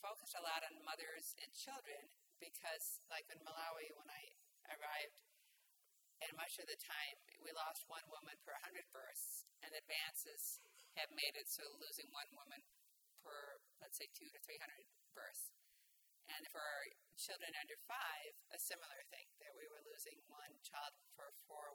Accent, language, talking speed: American, English, 165 wpm